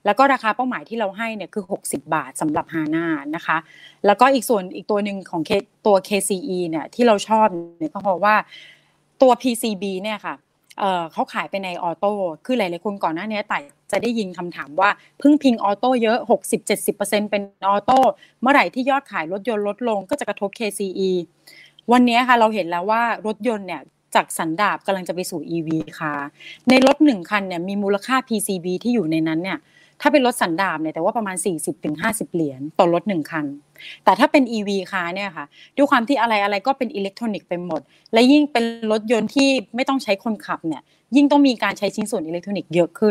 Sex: female